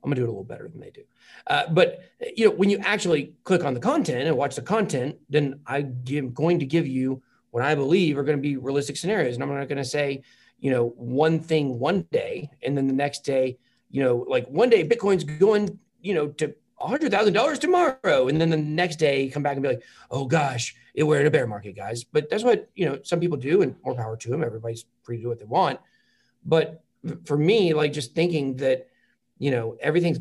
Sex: male